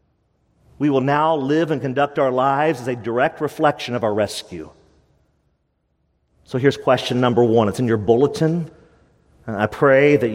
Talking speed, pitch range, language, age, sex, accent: 155 wpm, 110-155 Hz, English, 40-59, male, American